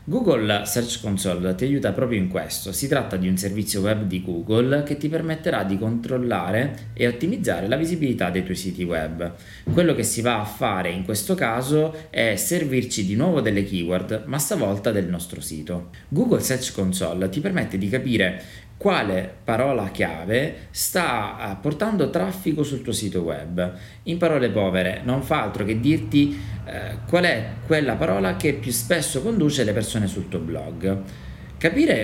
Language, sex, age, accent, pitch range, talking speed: Italian, male, 20-39, native, 95-140 Hz, 165 wpm